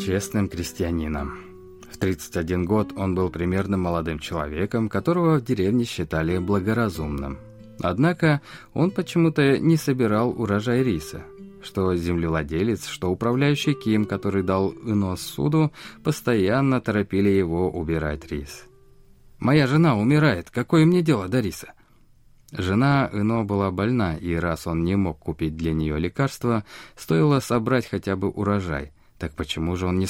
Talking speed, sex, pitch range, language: 135 wpm, male, 85-120 Hz, Russian